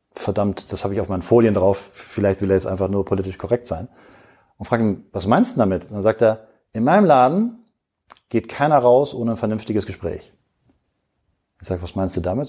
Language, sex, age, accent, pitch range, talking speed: German, male, 40-59, German, 95-115 Hz, 205 wpm